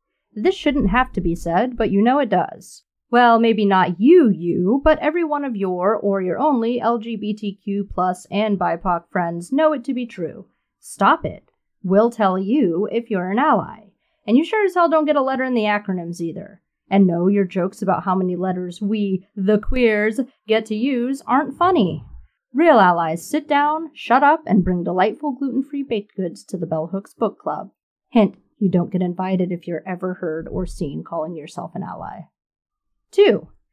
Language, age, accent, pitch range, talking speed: English, 30-49, American, 185-275 Hz, 185 wpm